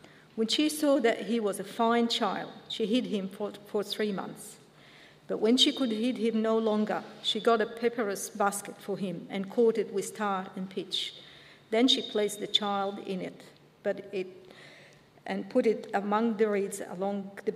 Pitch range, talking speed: 200-240 Hz, 190 wpm